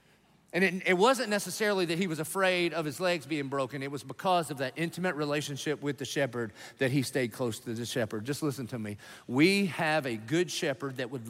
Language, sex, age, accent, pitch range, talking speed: English, male, 40-59, American, 140-180 Hz, 225 wpm